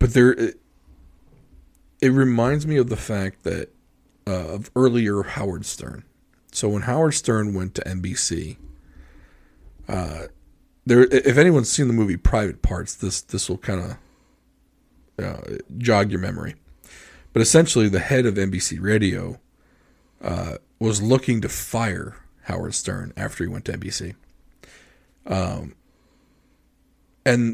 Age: 40-59